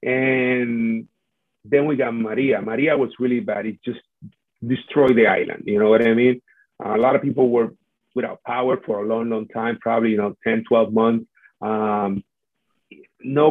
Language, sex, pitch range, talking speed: English, male, 120-150 Hz, 175 wpm